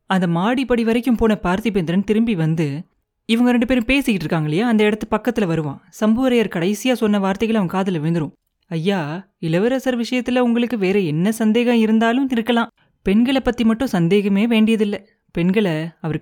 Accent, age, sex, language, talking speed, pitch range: native, 30-49, female, Tamil, 150 wpm, 170-230 Hz